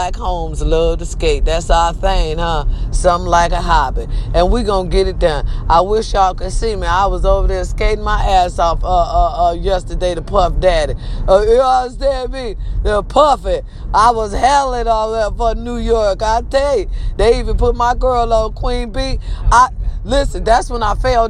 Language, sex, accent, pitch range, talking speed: English, female, American, 195-260 Hz, 205 wpm